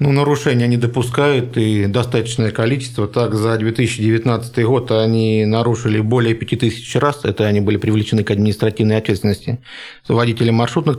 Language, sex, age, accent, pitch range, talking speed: Russian, male, 50-69, native, 115-135 Hz, 135 wpm